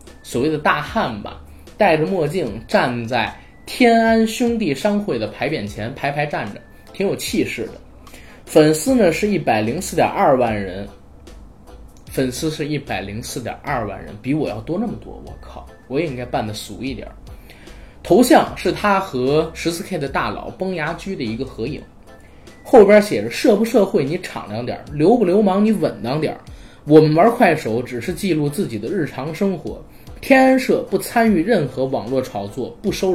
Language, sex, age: Chinese, male, 20-39